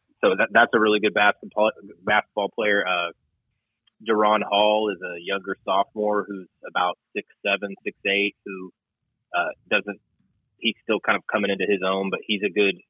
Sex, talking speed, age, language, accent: male, 170 wpm, 30-49, English, American